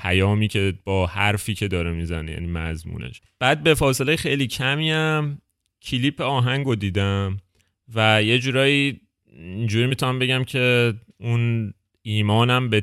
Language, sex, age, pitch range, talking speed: Persian, male, 30-49, 95-120 Hz, 125 wpm